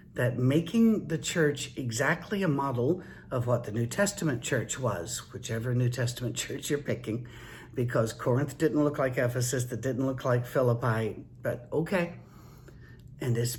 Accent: American